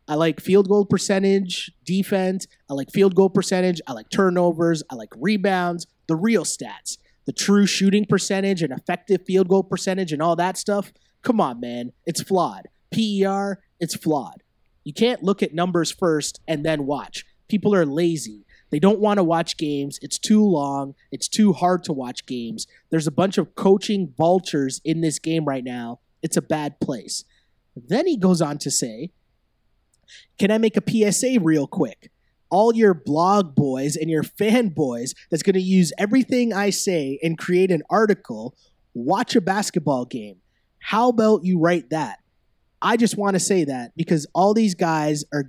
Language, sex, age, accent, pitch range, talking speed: English, male, 30-49, American, 155-200 Hz, 180 wpm